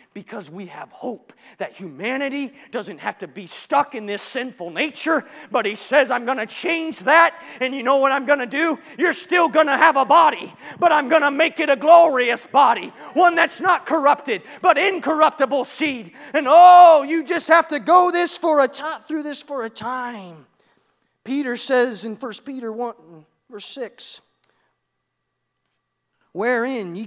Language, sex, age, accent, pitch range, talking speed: English, male, 30-49, American, 225-300 Hz, 175 wpm